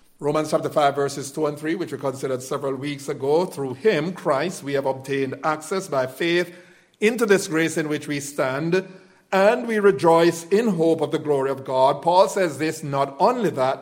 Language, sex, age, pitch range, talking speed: English, male, 50-69, 140-180 Hz, 195 wpm